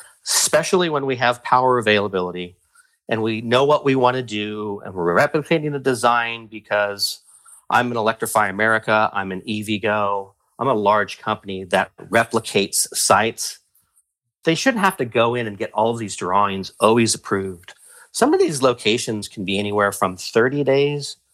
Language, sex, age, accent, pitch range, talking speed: English, male, 40-59, American, 95-120 Hz, 165 wpm